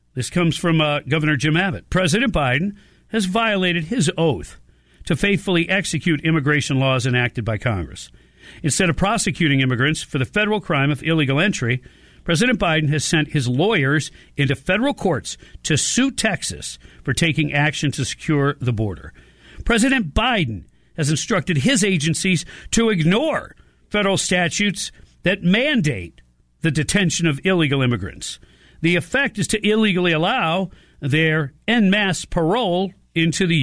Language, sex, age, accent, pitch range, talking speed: English, male, 50-69, American, 140-195 Hz, 145 wpm